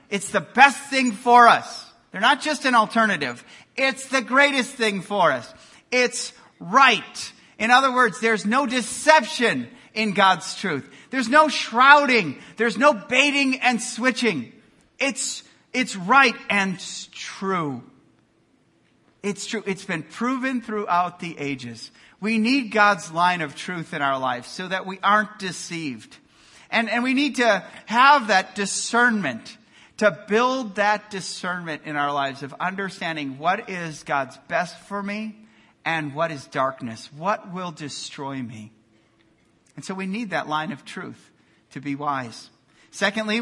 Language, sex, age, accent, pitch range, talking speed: English, male, 40-59, American, 170-235 Hz, 145 wpm